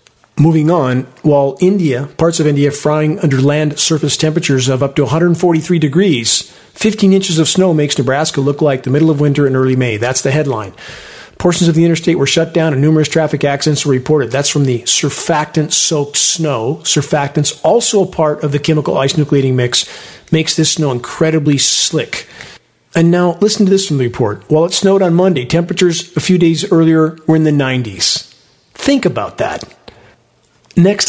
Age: 40-59